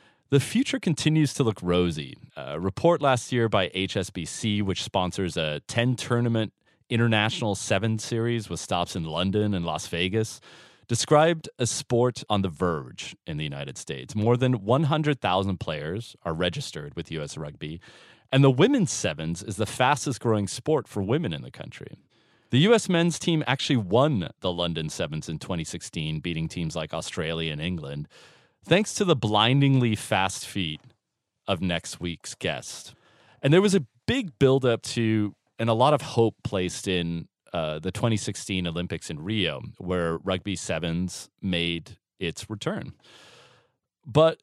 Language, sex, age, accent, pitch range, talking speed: English, male, 30-49, American, 90-130 Hz, 150 wpm